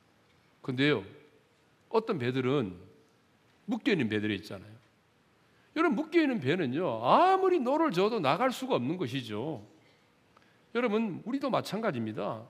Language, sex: Korean, male